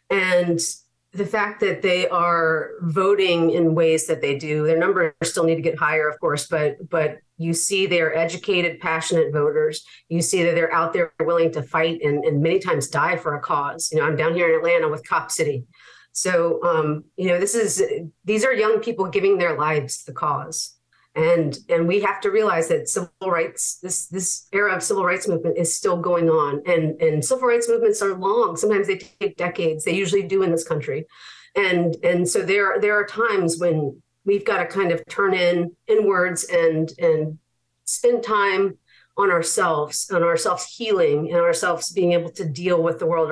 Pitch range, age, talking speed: 160-200 Hz, 40-59, 200 wpm